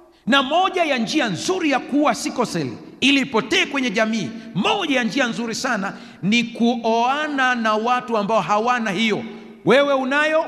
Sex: male